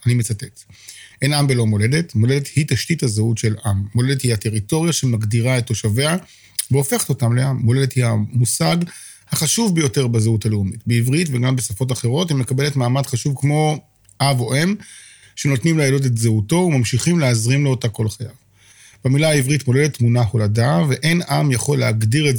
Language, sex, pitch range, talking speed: Hebrew, male, 115-145 Hz, 160 wpm